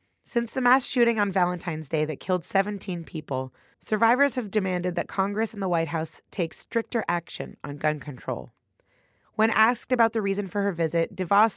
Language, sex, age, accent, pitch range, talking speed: English, female, 20-39, American, 155-210 Hz, 180 wpm